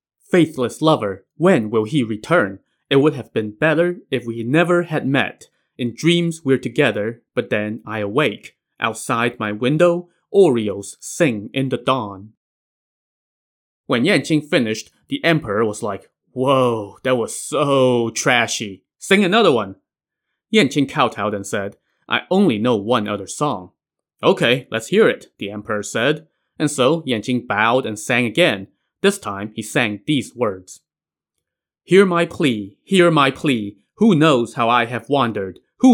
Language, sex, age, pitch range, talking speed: English, male, 20-39, 110-165 Hz, 150 wpm